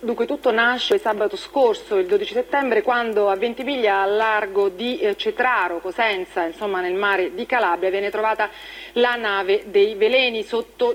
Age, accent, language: 40-59, native, Italian